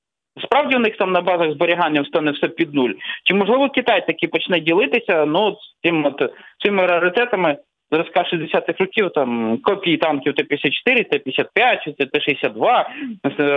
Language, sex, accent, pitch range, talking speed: Ukrainian, male, native, 155-205 Hz, 130 wpm